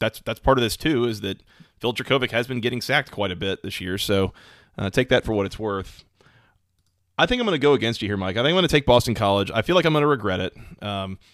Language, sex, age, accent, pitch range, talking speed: English, male, 30-49, American, 100-120 Hz, 285 wpm